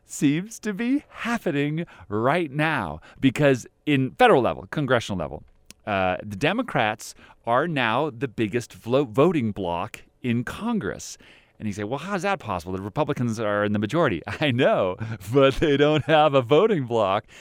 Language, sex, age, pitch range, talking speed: English, male, 40-59, 100-145 Hz, 160 wpm